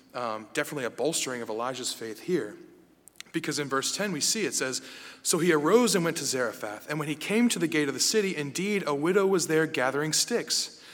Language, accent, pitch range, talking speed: English, American, 155-195 Hz, 220 wpm